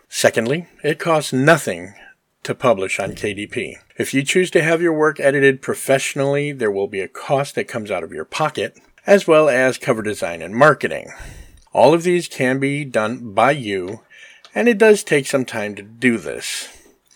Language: English